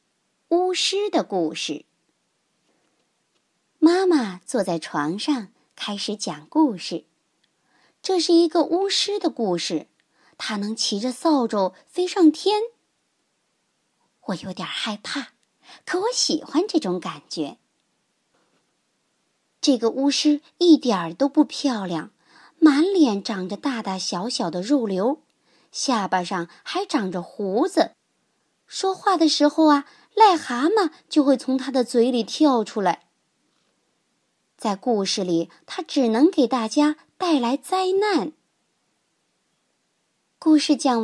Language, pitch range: Chinese, 215-340 Hz